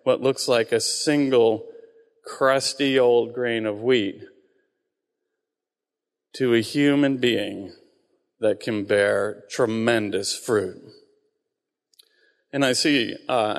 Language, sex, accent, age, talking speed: English, male, American, 40-59, 100 wpm